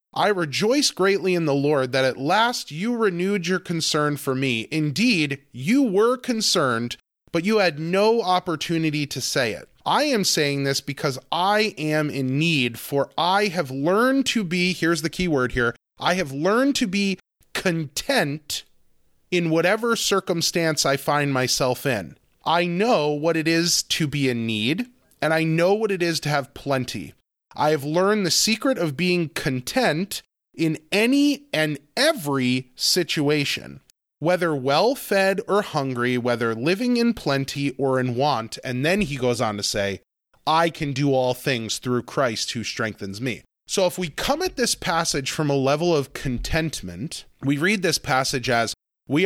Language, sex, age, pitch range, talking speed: English, male, 30-49, 130-185 Hz, 165 wpm